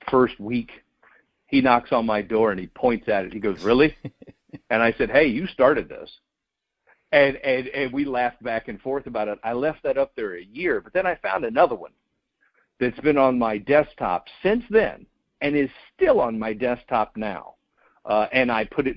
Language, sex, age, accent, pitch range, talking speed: English, male, 50-69, American, 115-145 Hz, 200 wpm